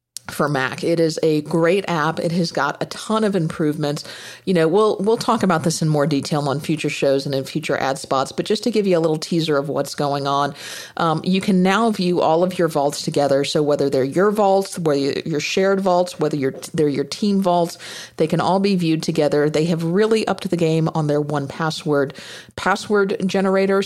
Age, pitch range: 50-69, 150-185 Hz